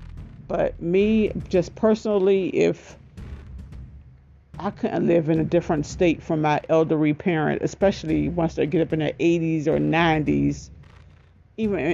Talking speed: 135 wpm